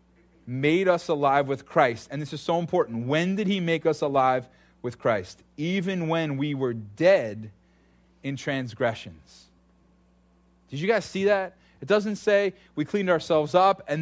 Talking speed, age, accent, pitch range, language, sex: 165 wpm, 30-49, American, 115-165 Hz, English, male